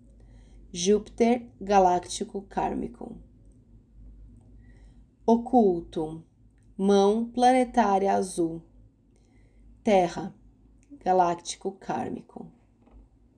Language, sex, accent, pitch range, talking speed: Portuguese, female, Brazilian, 170-225 Hz, 45 wpm